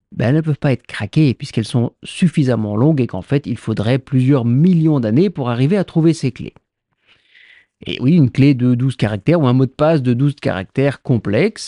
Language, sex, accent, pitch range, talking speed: French, male, French, 120-175 Hz, 210 wpm